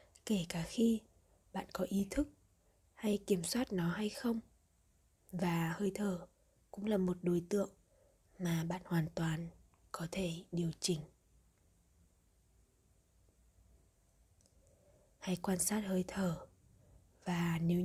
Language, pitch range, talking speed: Vietnamese, 165-200 Hz, 120 wpm